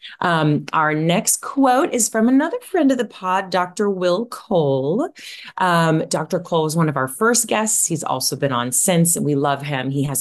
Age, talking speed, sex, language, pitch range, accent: 30-49, 200 wpm, female, English, 135-180 Hz, American